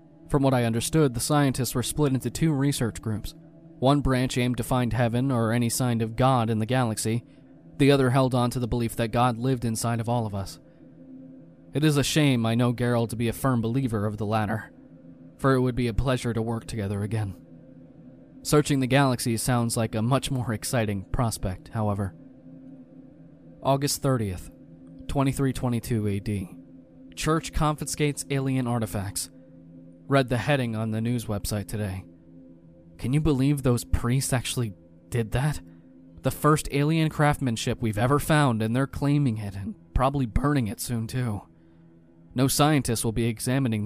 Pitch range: 110-135 Hz